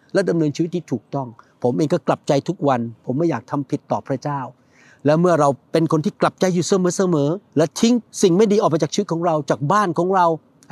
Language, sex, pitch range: Thai, male, 155-205 Hz